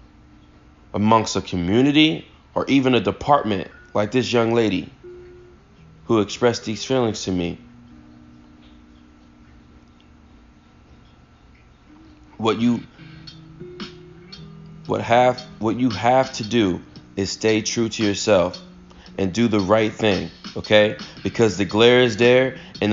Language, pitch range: English, 100-130 Hz